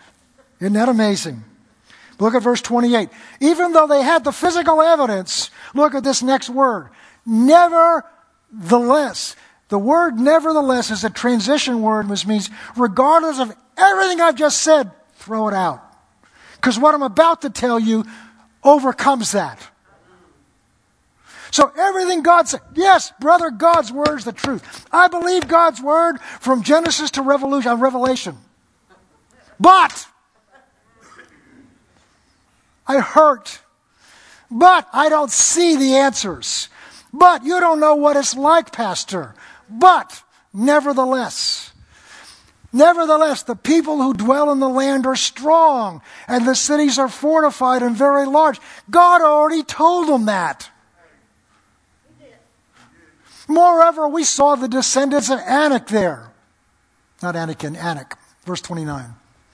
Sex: male